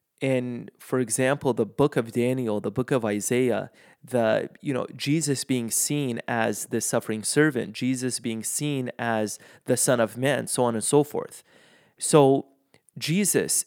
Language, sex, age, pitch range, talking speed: English, male, 30-49, 115-140 Hz, 160 wpm